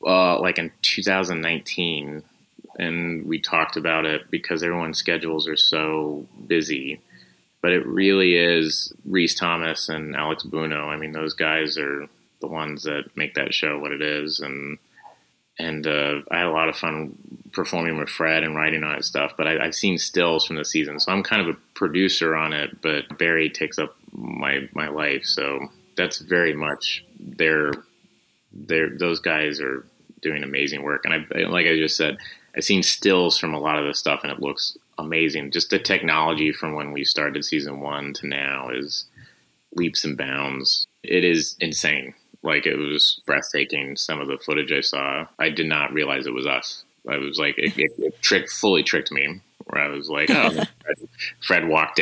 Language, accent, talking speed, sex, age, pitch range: English, American, 180 wpm, male, 30-49, 75-85 Hz